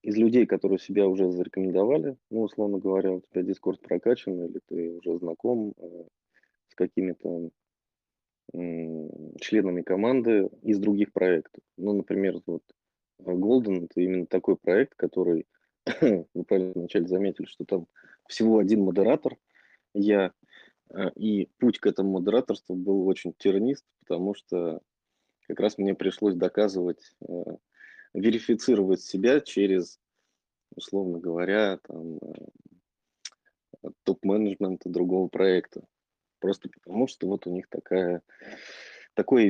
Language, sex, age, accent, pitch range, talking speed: Russian, male, 20-39, native, 90-105 Hz, 120 wpm